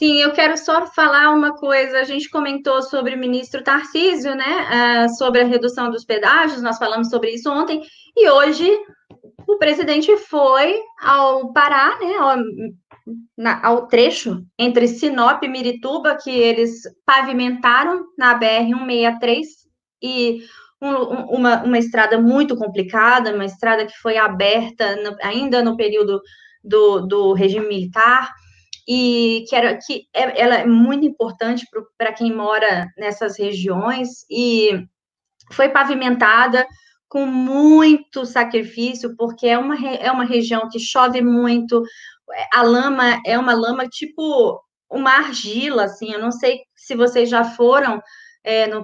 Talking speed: 135 wpm